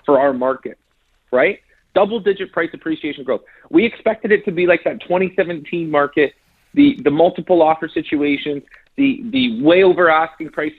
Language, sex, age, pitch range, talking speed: English, male, 30-49, 140-195 Hz, 155 wpm